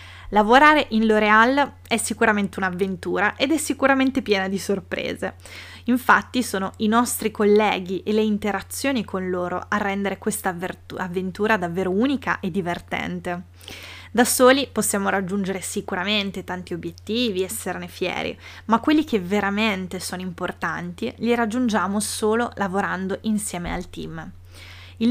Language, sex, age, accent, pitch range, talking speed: Italian, female, 20-39, native, 180-225 Hz, 125 wpm